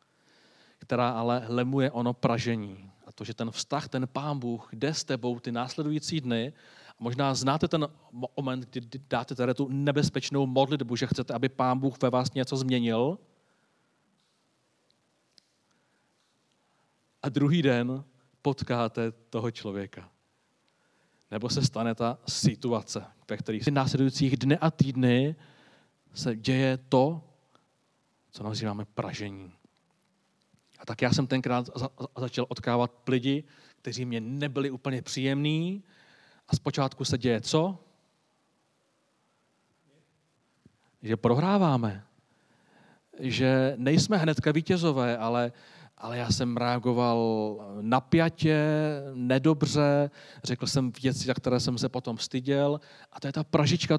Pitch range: 120-145 Hz